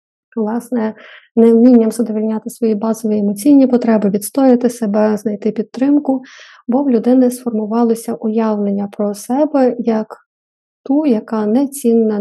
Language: Ukrainian